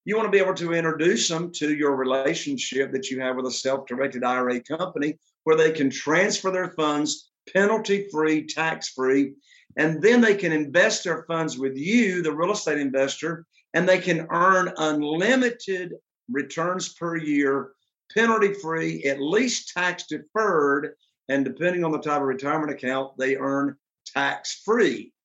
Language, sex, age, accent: English, male, 50-69, American